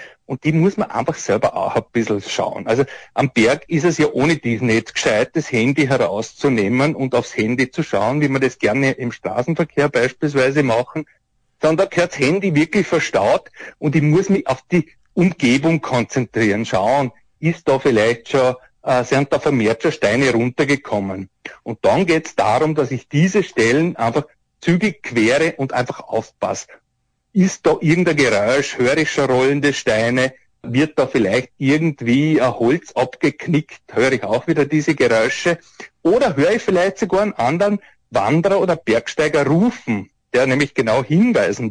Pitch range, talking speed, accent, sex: 125-165 Hz, 165 wpm, Austrian, male